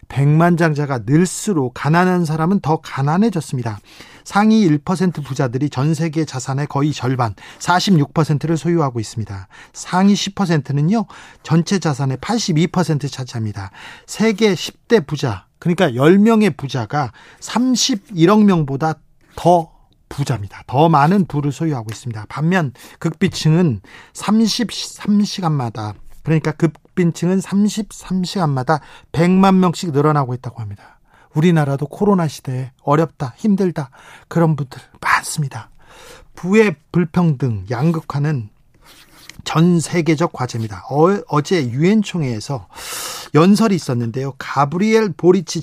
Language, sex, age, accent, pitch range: Korean, male, 40-59, native, 135-180 Hz